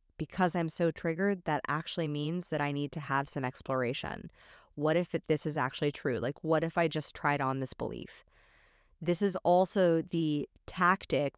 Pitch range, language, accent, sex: 150-200 Hz, English, American, female